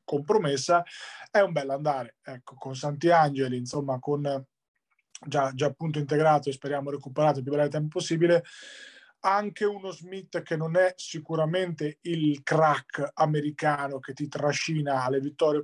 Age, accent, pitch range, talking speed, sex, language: 30-49, native, 140-165 Hz, 145 wpm, male, Italian